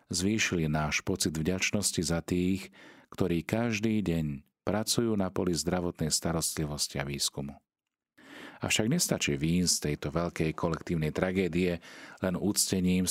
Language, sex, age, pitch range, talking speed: Slovak, male, 40-59, 80-100 Hz, 120 wpm